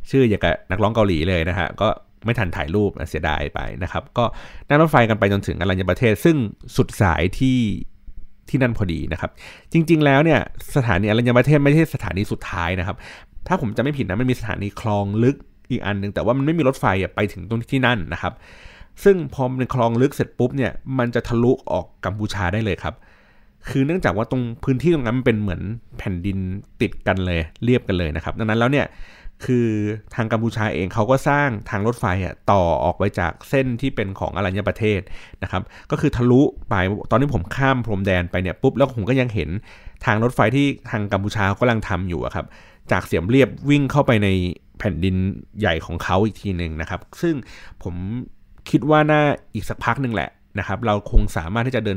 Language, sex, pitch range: Thai, male, 95-125 Hz